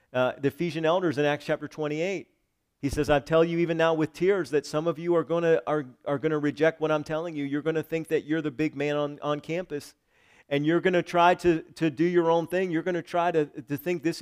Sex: male